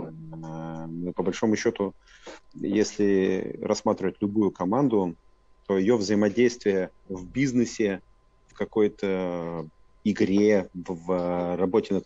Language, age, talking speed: Russian, 30-49, 90 wpm